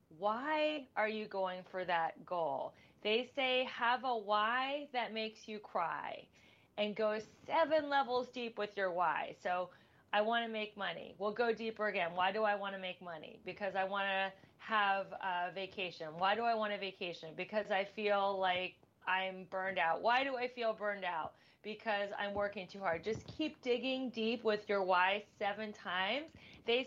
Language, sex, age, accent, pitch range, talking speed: English, female, 30-49, American, 190-235 Hz, 185 wpm